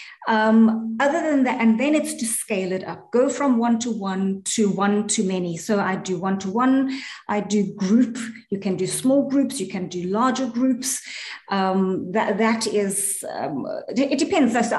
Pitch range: 195-250 Hz